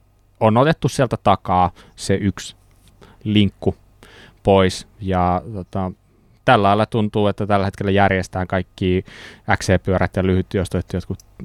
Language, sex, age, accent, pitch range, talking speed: Finnish, male, 20-39, native, 90-110 Hz, 120 wpm